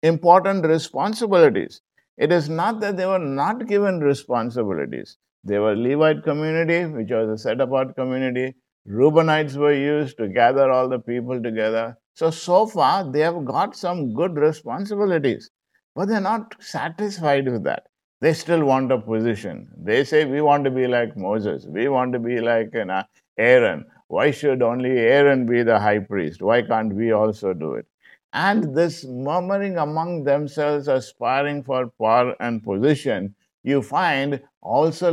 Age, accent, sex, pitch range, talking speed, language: 50-69, Indian, male, 115-160 Hz, 155 wpm, English